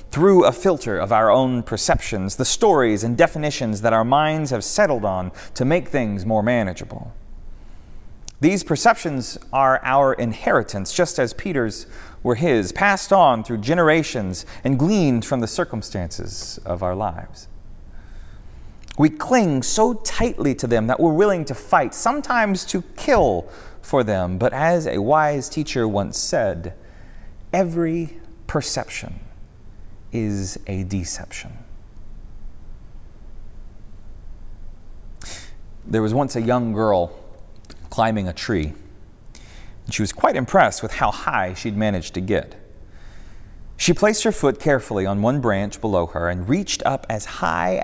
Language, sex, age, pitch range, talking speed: English, male, 30-49, 95-130 Hz, 135 wpm